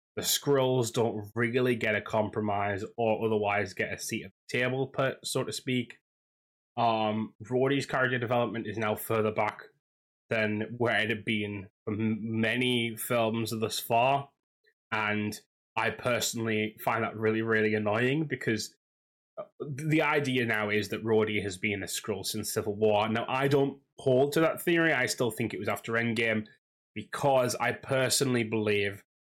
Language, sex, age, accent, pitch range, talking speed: English, male, 20-39, British, 105-125 Hz, 160 wpm